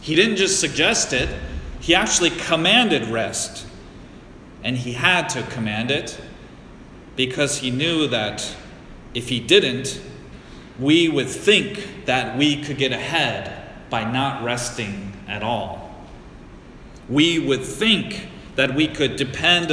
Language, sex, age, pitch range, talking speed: English, male, 30-49, 125-165 Hz, 130 wpm